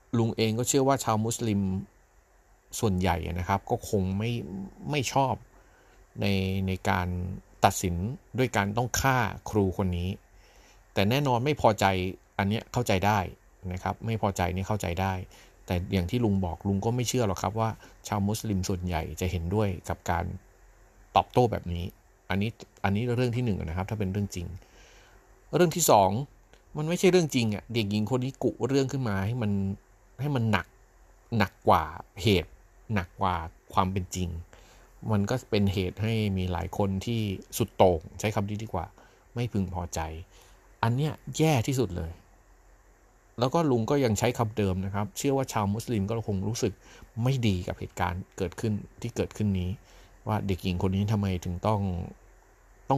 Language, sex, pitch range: Thai, male, 95-115 Hz